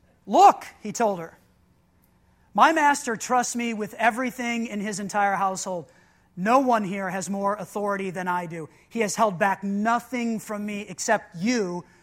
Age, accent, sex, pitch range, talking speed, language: 30-49, American, male, 190-230 Hz, 160 wpm, English